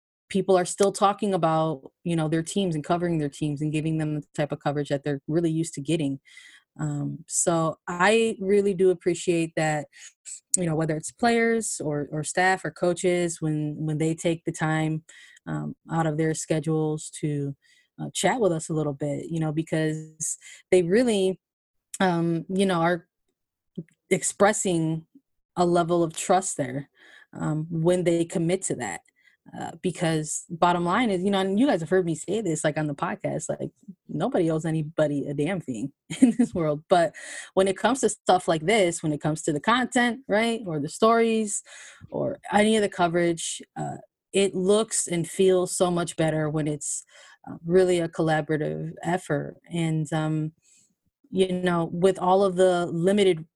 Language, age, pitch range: English, 20-39, 155-190 Hz